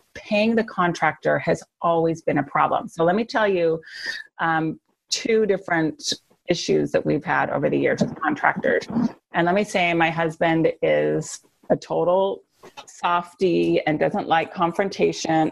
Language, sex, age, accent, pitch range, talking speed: English, female, 30-49, American, 160-215 Hz, 150 wpm